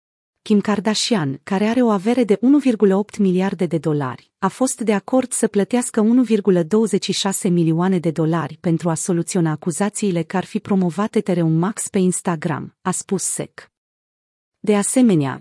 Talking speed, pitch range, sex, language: 150 wpm, 175-220 Hz, female, Romanian